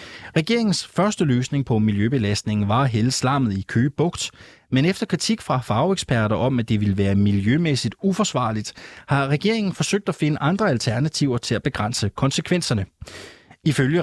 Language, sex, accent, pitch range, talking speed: Danish, male, native, 110-160 Hz, 150 wpm